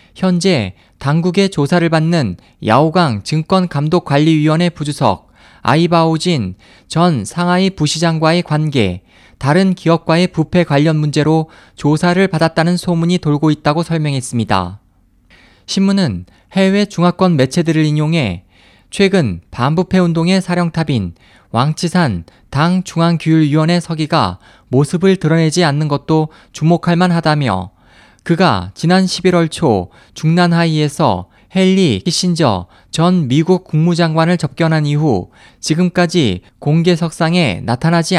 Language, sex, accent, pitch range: Korean, male, native, 120-175 Hz